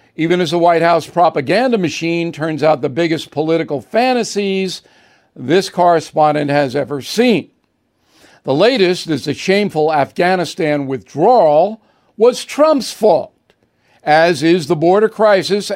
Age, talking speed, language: 60-79, 125 wpm, English